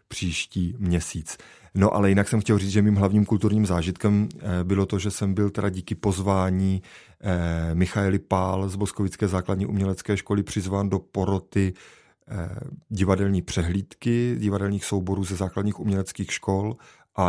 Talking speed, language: 140 wpm, Czech